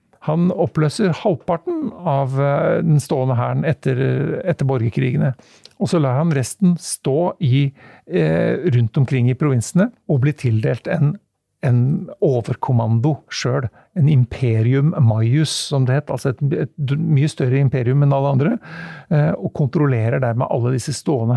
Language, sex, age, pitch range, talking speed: English, male, 50-69, 125-160 Hz, 140 wpm